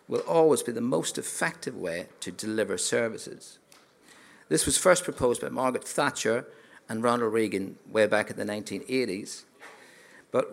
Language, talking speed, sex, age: English, 150 wpm, male, 50-69